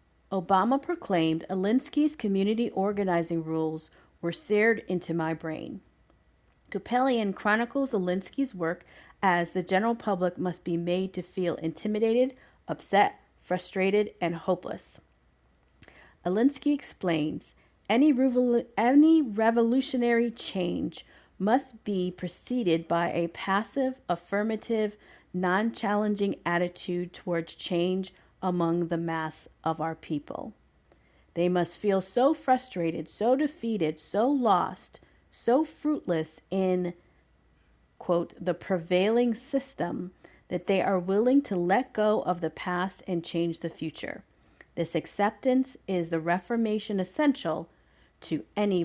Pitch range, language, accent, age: 170-225 Hz, English, American, 40-59